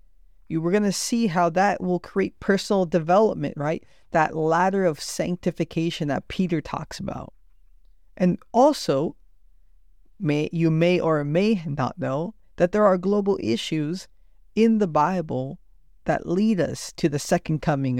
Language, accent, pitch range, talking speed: English, American, 150-190 Hz, 145 wpm